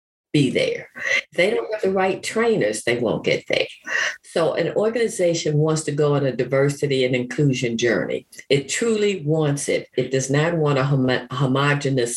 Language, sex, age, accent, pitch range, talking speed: English, female, 50-69, American, 140-195 Hz, 175 wpm